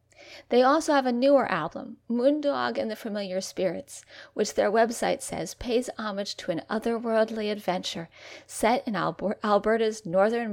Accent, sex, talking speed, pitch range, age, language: American, female, 140 wpm, 210-285 Hz, 40-59, English